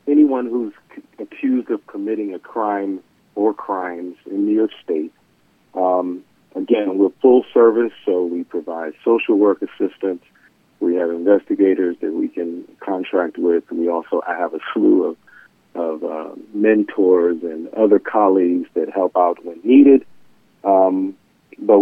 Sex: male